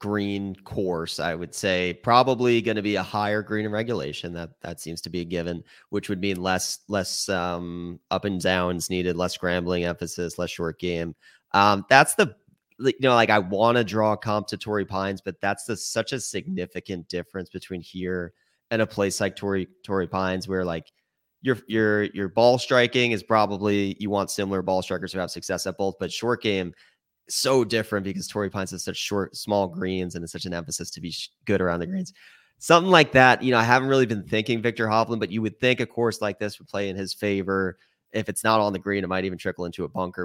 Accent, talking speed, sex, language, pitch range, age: American, 220 wpm, male, English, 90-110 Hz, 30-49